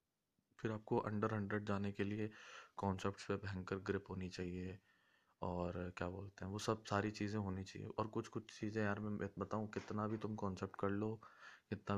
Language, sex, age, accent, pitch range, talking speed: English, male, 20-39, Indian, 95-105 Hz, 180 wpm